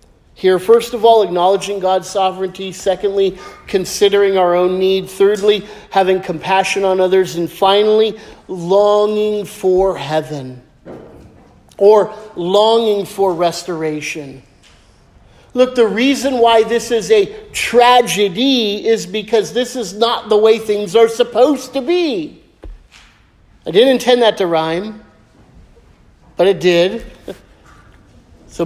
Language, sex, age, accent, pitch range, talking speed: English, male, 50-69, American, 185-235 Hz, 115 wpm